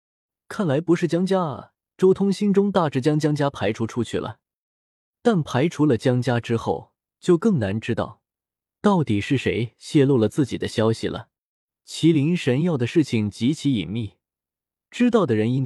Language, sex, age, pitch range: Chinese, male, 20-39, 110-160 Hz